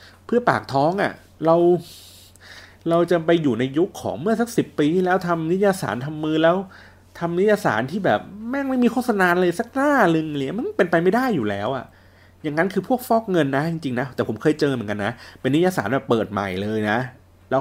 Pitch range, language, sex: 100-145 Hz, Thai, male